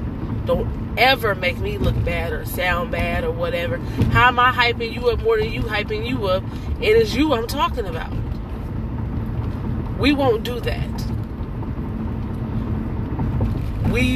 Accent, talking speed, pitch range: American, 145 wpm, 110-120 Hz